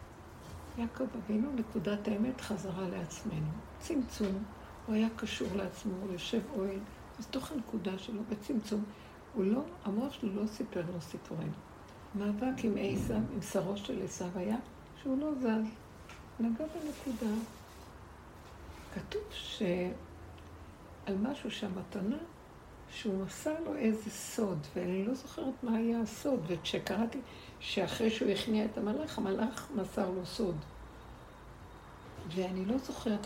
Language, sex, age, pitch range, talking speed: Hebrew, female, 60-79, 190-240 Hz, 125 wpm